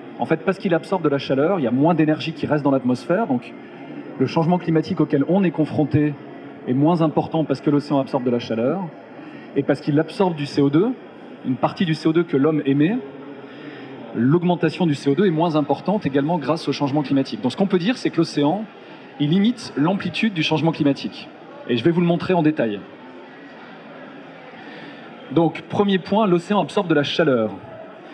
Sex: male